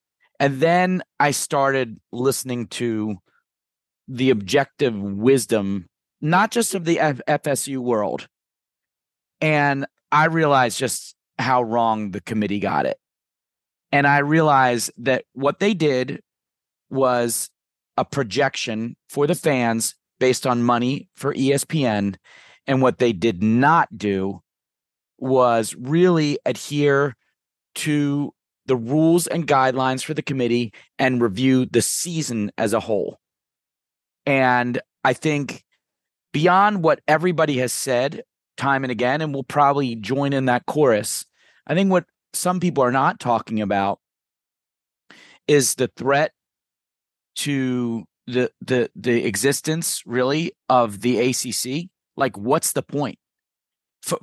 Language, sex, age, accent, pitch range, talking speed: English, male, 30-49, American, 120-150 Hz, 125 wpm